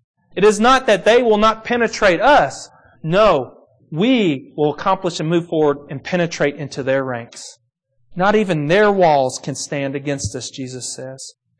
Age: 40-59